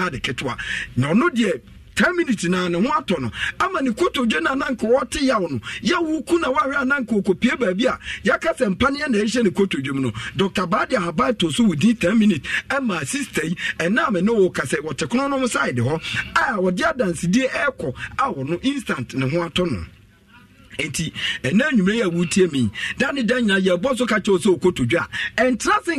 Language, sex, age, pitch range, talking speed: English, male, 50-69, 175-250 Hz, 145 wpm